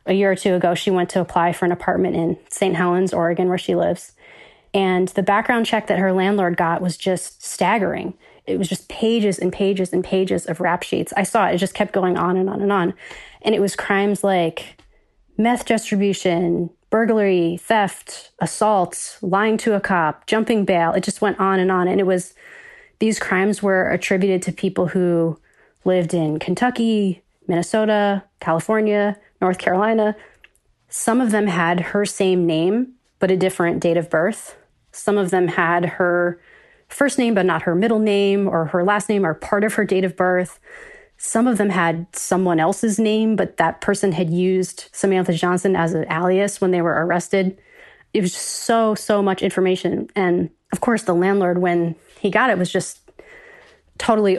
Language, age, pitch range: English, 20-39, 180-210 Hz